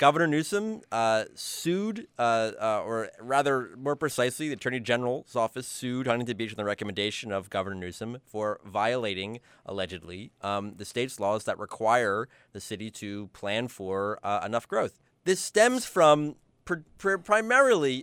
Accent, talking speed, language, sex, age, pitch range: American, 145 wpm, English, male, 30-49, 105-145 Hz